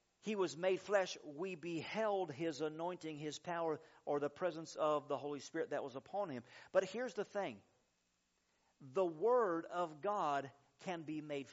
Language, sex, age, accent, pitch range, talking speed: English, male, 50-69, American, 145-180 Hz, 165 wpm